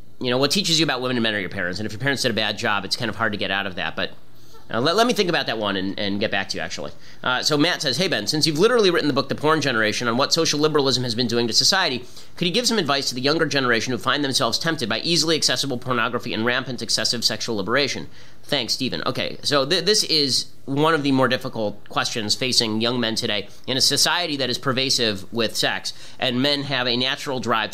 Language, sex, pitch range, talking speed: English, male, 110-145 Hz, 260 wpm